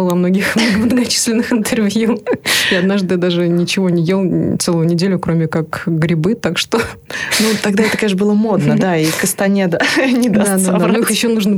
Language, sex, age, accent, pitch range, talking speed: Russian, female, 20-39, native, 175-210 Hz, 165 wpm